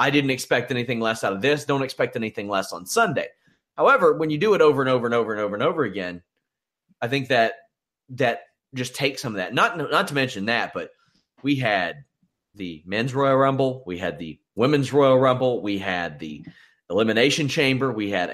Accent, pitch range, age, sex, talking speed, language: American, 115-150 Hz, 30-49, male, 205 wpm, English